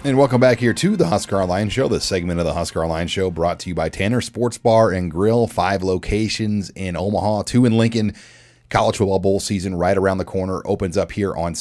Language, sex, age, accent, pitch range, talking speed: English, male, 30-49, American, 90-105 Hz, 225 wpm